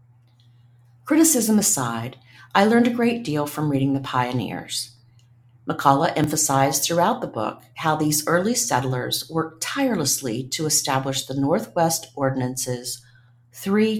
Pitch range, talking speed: 120-160 Hz, 120 wpm